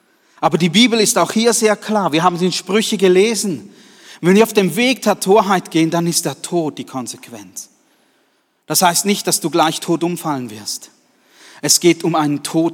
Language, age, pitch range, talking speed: German, 40-59, 135-180 Hz, 200 wpm